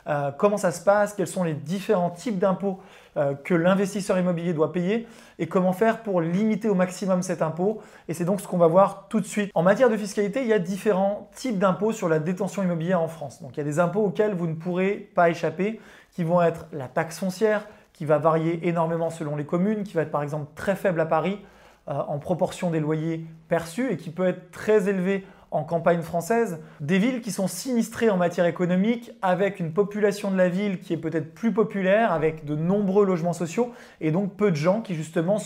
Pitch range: 165-205 Hz